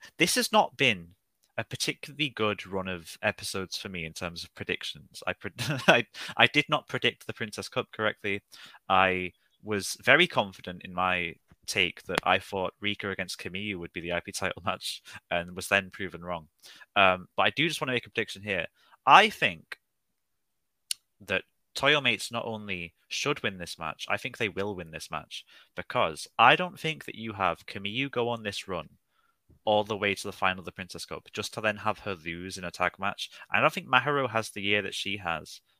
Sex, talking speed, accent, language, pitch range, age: male, 205 wpm, British, English, 90-110 Hz, 20-39